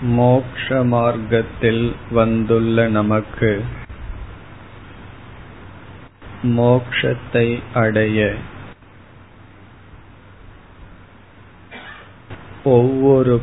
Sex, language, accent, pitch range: male, Tamil, native, 100-115 Hz